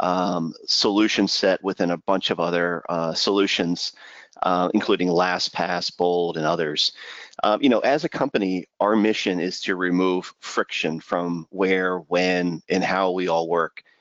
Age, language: 40-59, English